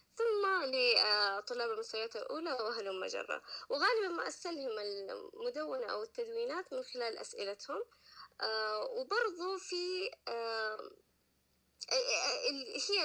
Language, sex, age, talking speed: Arabic, female, 20-39, 85 wpm